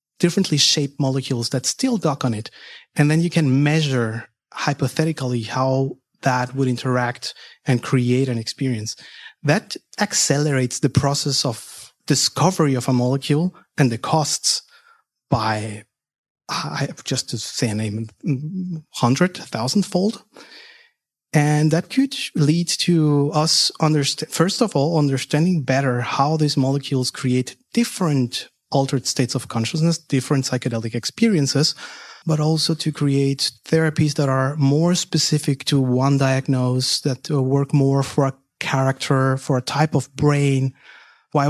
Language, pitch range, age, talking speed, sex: English, 130-155 Hz, 30-49, 130 wpm, male